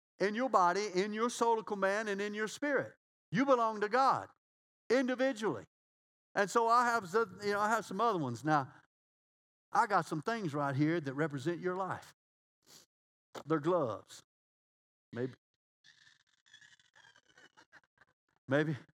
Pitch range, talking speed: 150-220 Hz, 135 wpm